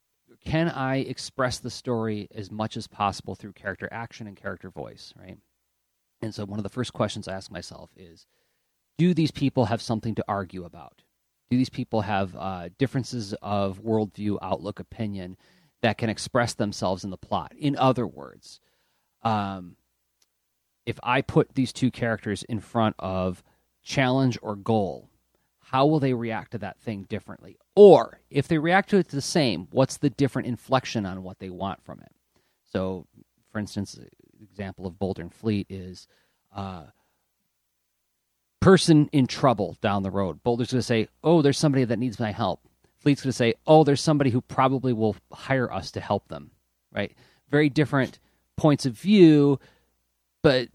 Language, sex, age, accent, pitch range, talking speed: English, male, 30-49, American, 95-130 Hz, 170 wpm